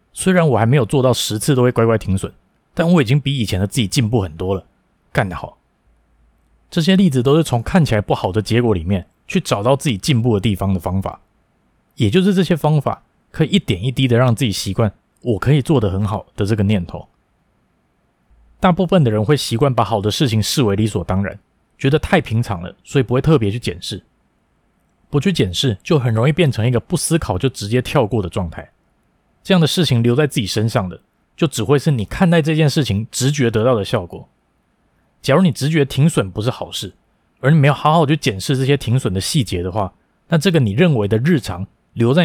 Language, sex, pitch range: Chinese, male, 100-145 Hz